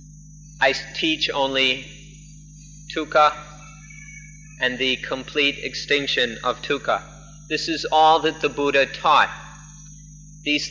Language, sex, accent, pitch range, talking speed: English, male, American, 135-155 Hz, 100 wpm